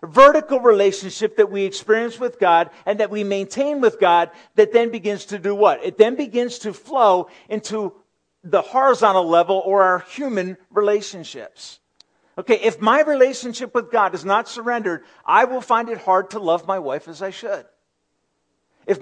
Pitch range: 180-240 Hz